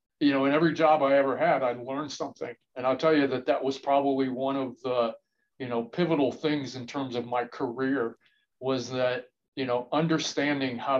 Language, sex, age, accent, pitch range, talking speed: English, male, 40-59, American, 125-150 Hz, 200 wpm